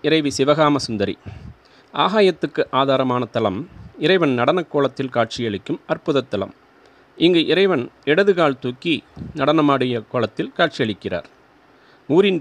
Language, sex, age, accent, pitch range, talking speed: Tamil, male, 30-49, native, 125-155 Hz, 85 wpm